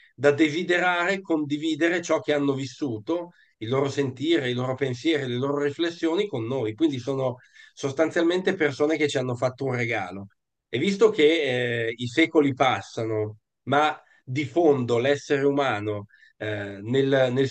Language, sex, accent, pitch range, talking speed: Italian, male, native, 125-155 Hz, 145 wpm